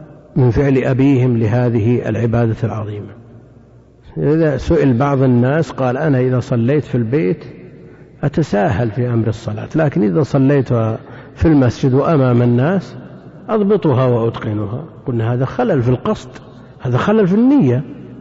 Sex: male